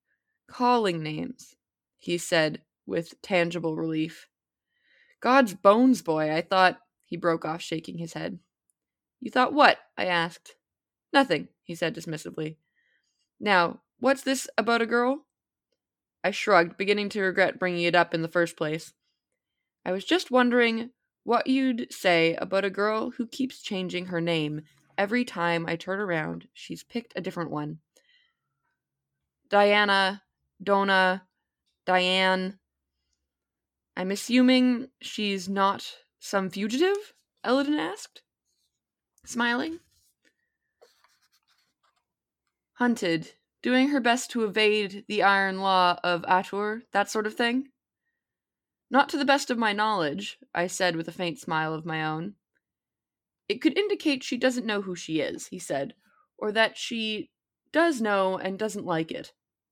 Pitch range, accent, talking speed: 170-250 Hz, American, 135 wpm